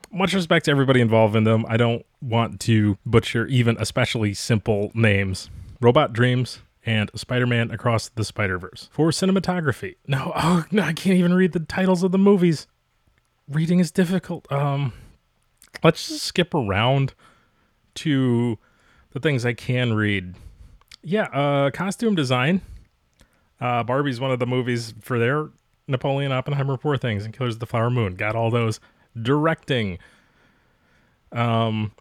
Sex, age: male, 30-49